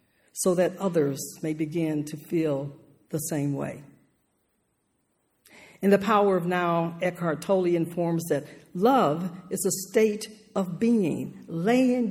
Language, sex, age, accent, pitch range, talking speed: English, female, 60-79, American, 170-225 Hz, 130 wpm